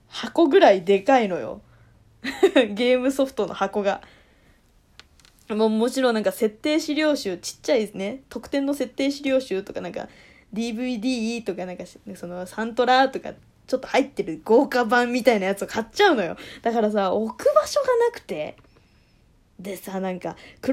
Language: Japanese